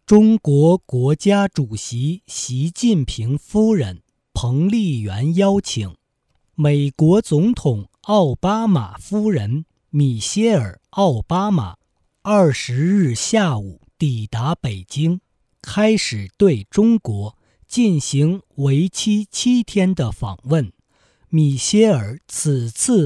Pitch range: 120-200 Hz